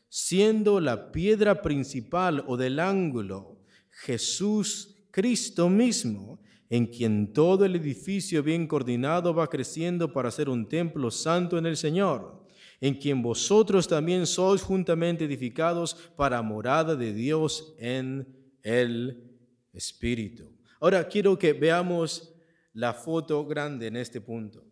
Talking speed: 125 wpm